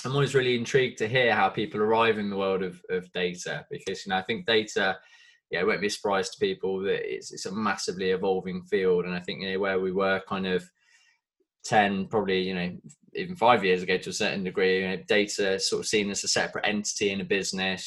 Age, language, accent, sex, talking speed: 20-39, English, British, male, 240 wpm